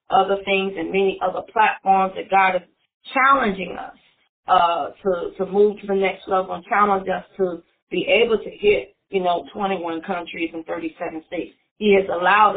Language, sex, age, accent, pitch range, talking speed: English, female, 30-49, American, 180-205 Hz, 175 wpm